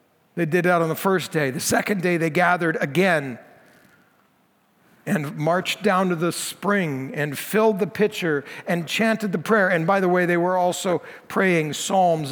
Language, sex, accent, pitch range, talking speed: English, male, American, 165-205 Hz, 175 wpm